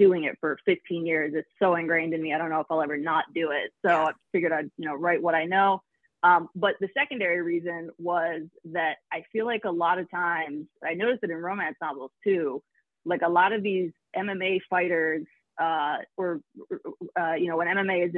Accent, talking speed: American, 215 wpm